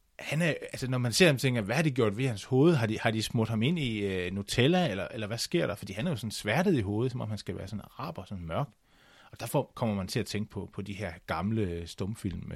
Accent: native